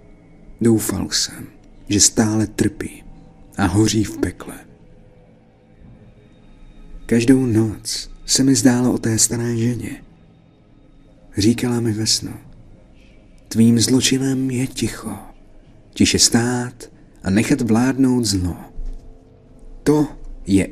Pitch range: 100-130 Hz